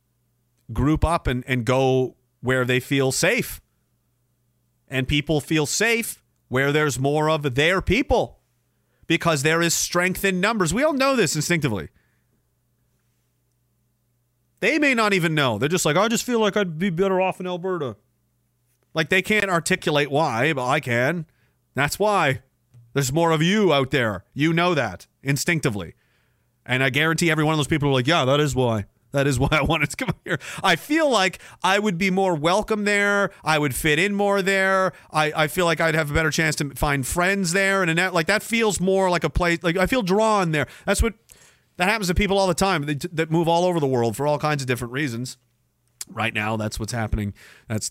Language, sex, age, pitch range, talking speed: English, male, 40-59, 120-175 Hz, 200 wpm